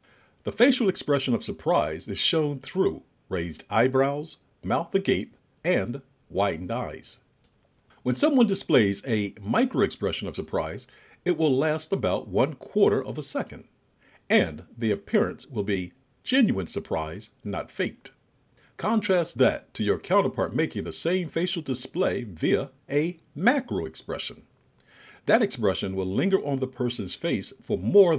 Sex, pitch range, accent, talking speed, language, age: male, 110-165 Hz, American, 140 wpm, English, 50-69